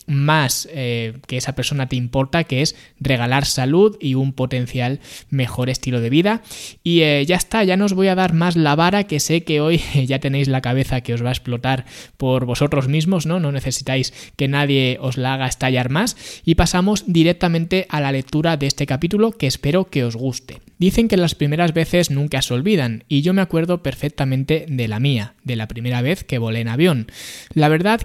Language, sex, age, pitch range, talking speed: Spanish, male, 20-39, 130-170 Hz, 205 wpm